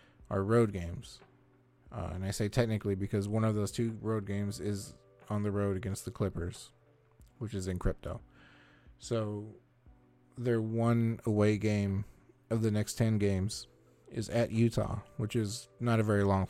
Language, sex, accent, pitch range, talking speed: English, male, American, 100-115 Hz, 165 wpm